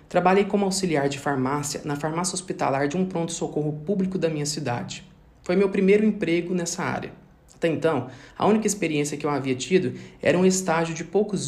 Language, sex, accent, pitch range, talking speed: Portuguese, male, Brazilian, 140-185 Hz, 185 wpm